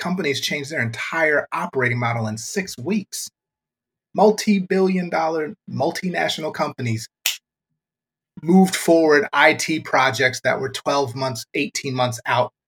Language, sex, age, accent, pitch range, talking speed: English, male, 30-49, American, 115-150 Hz, 115 wpm